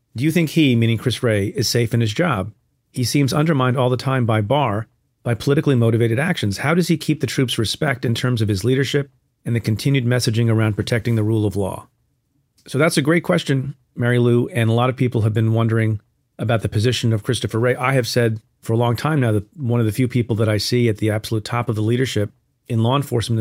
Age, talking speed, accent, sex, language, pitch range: 40-59, 240 wpm, American, male, English, 115-135 Hz